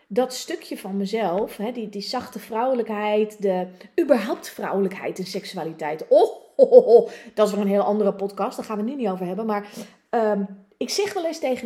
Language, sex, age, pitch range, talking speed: Dutch, female, 30-49, 200-260 Hz, 205 wpm